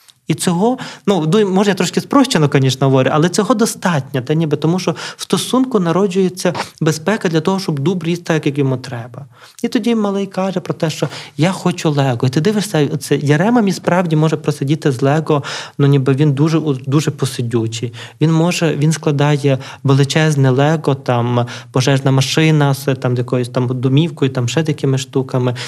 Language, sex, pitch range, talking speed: Ukrainian, male, 135-165 Hz, 175 wpm